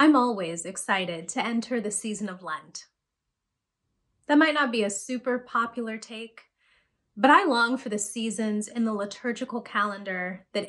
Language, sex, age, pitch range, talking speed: English, female, 20-39, 205-260 Hz, 155 wpm